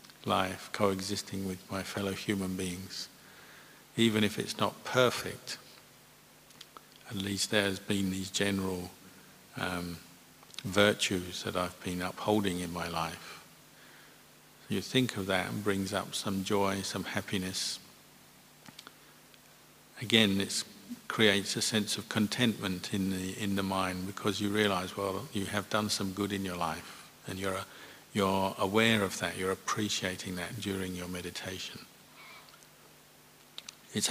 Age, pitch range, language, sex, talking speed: 50-69, 95-105 Hz, English, male, 135 wpm